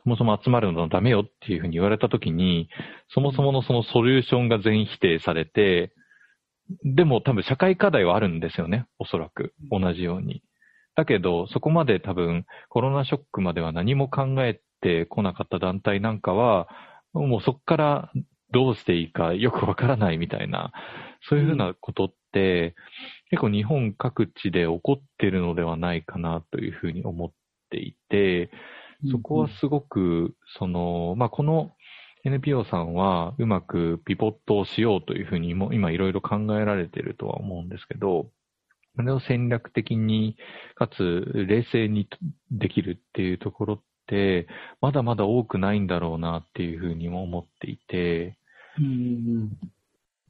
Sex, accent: male, native